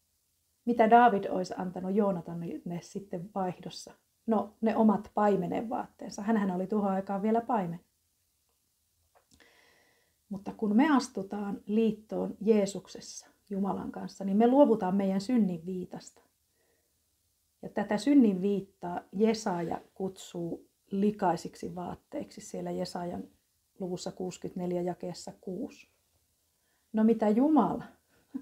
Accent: native